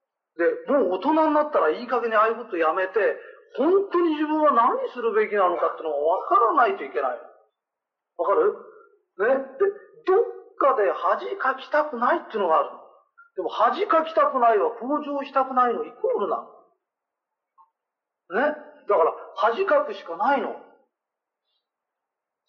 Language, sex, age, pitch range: Japanese, male, 40-59, 265-445 Hz